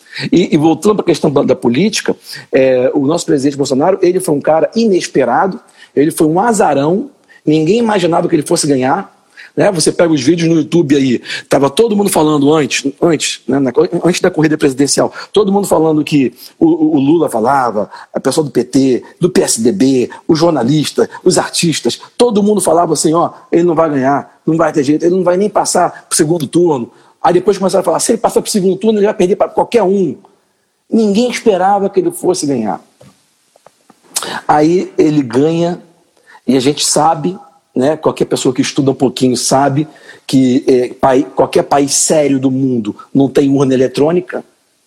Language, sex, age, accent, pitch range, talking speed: Portuguese, male, 50-69, Brazilian, 140-185 Hz, 185 wpm